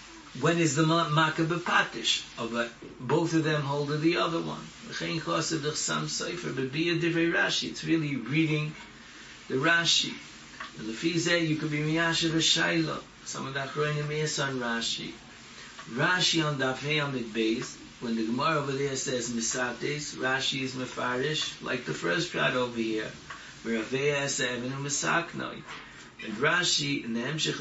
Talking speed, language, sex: 155 wpm, English, male